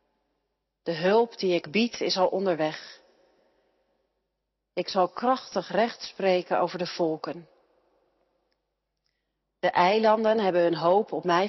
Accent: Dutch